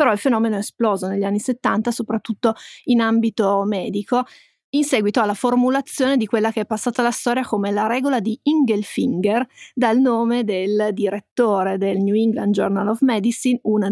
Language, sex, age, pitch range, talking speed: Italian, female, 30-49, 210-245 Hz, 170 wpm